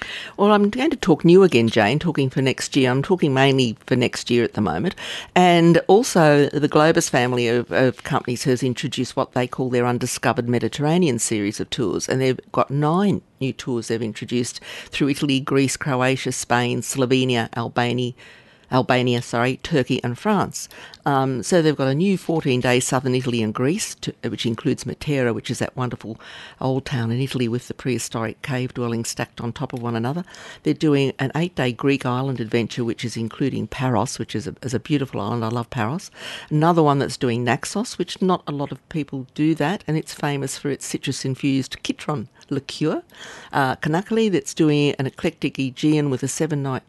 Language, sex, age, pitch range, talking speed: English, female, 50-69, 125-150 Hz, 185 wpm